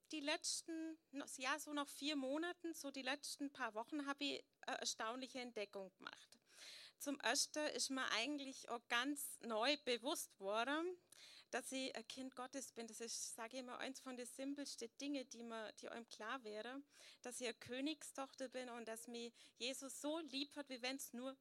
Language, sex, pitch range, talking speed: German, female, 230-285 Hz, 185 wpm